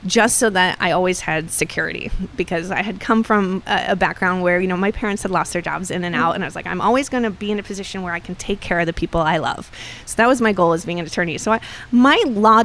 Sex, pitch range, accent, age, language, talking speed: female, 175-215 Hz, American, 20-39, English, 290 wpm